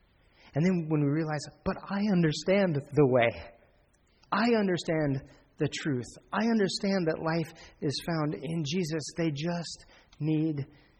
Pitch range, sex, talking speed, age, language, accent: 110-140 Hz, male, 135 wpm, 40-59, English, American